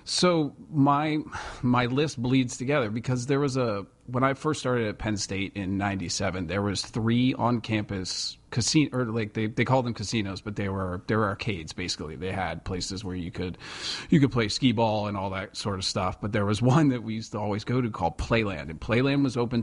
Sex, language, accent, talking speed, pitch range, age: male, English, American, 225 wpm, 100-120 Hz, 40-59